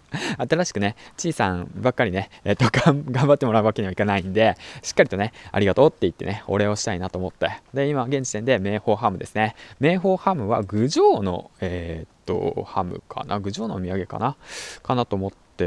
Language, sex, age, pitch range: Japanese, male, 20-39, 100-130 Hz